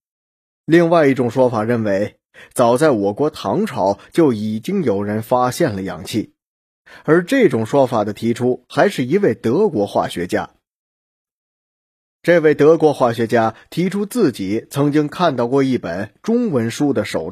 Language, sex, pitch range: Chinese, male, 110-155 Hz